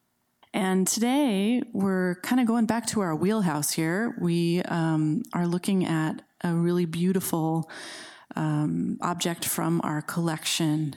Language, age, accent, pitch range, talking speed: English, 30-49, American, 160-215 Hz, 130 wpm